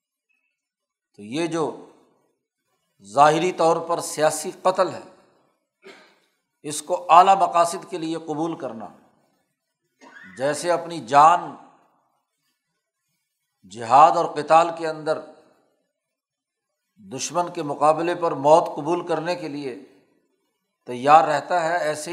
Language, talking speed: Urdu, 105 wpm